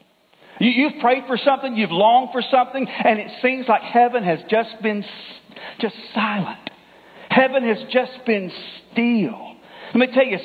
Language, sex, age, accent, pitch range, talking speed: English, male, 50-69, American, 215-260 Hz, 155 wpm